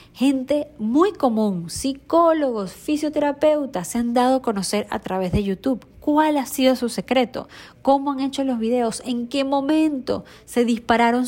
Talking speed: 155 wpm